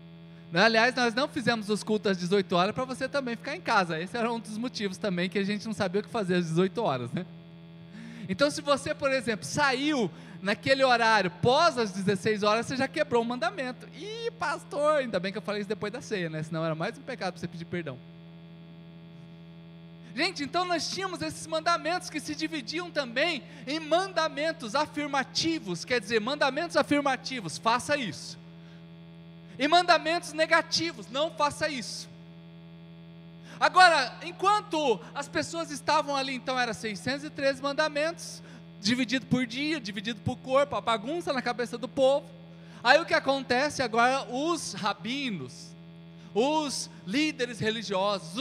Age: 20-39